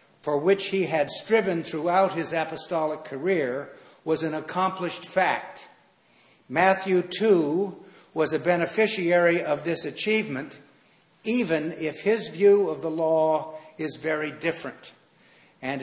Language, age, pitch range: English, 60-79, 140-175 Hz